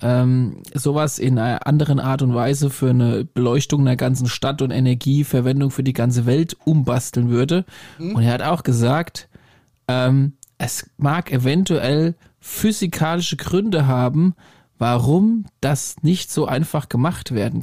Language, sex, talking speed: German, male, 135 wpm